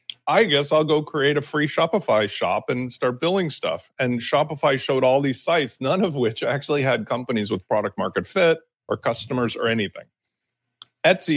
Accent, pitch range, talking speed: American, 120-155 Hz, 180 wpm